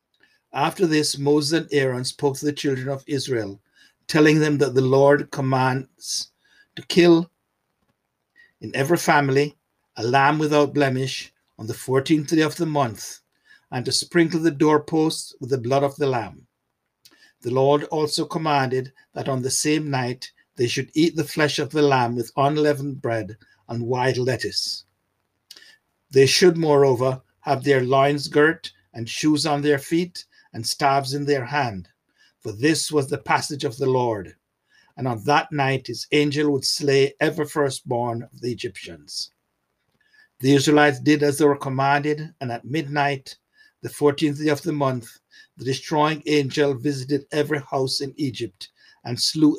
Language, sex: English, male